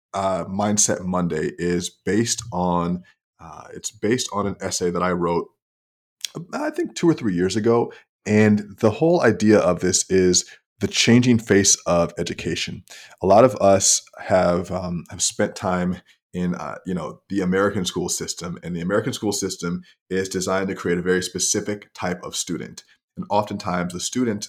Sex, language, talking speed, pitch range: male, English, 170 wpm, 90-105 Hz